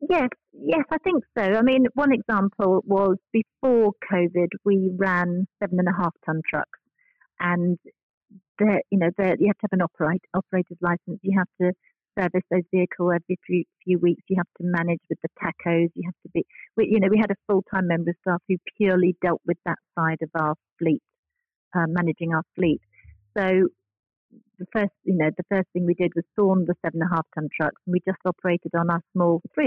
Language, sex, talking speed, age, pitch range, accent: English, female, 205 wpm, 50-69, 165-200 Hz, British